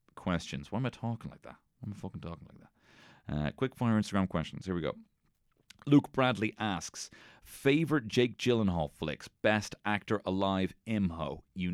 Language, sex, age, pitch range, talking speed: English, male, 30-49, 80-115 Hz, 165 wpm